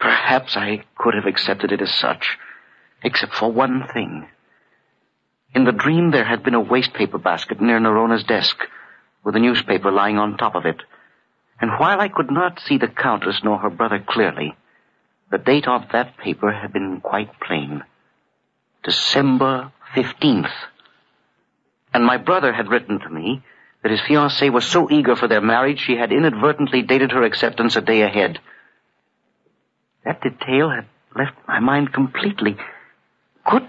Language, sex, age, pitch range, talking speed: English, male, 50-69, 105-135 Hz, 160 wpm